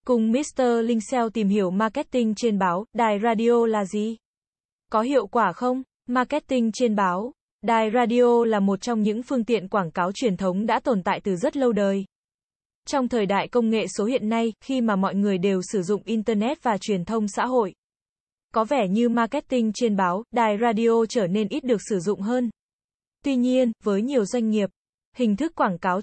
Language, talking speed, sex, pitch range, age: Vietnamese, 195 wpm, female, 200-245 Hz, 20-39